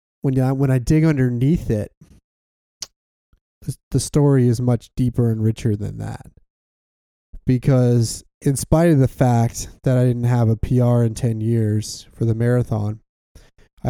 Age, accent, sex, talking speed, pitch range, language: 20-39, American, male, 150 wpm, 115-130 Hz, English